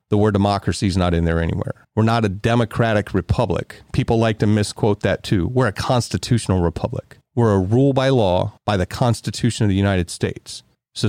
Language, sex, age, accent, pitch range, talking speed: English, male, 40-59, American, 100-125 Hz, 195 wpm